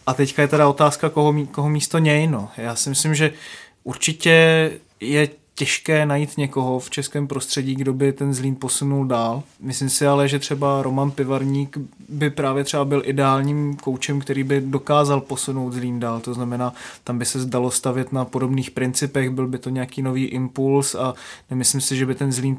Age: 20-39